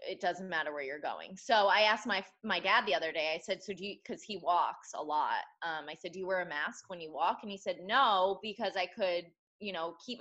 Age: 20-39